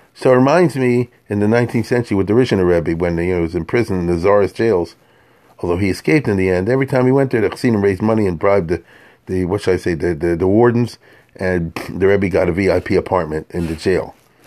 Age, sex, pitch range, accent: 40-59, male, 90-115 Hz, American